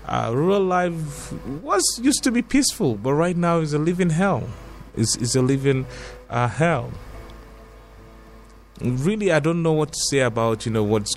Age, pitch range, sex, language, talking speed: 30-49, 105-140 Hz, male, English, 170 wpm